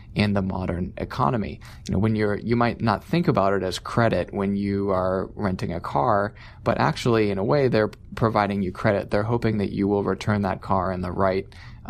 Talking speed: 210 wpm